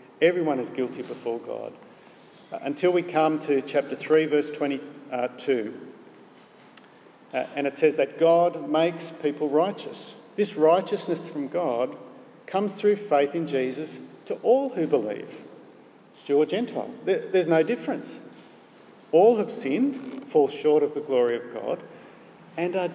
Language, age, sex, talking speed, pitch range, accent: English, 50-69, male, 135 wpm, 140-205 Hz, Australian